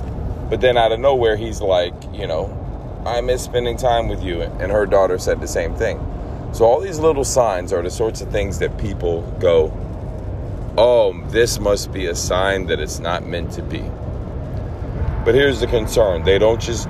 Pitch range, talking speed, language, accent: 90-115 Hz, 190 wpm, English, American